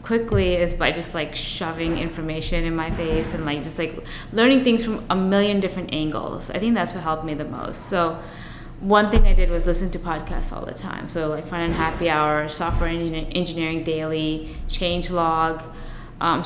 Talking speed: 195 wpm